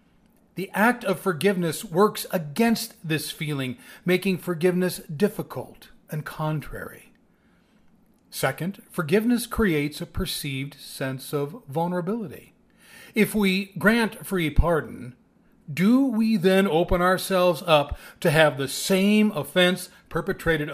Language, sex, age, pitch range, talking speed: English, male, 40-59, 155-210 Hz, 110 wpm